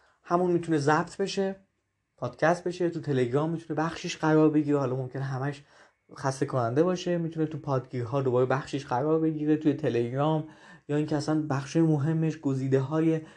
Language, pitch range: Persian, 140-175 Hz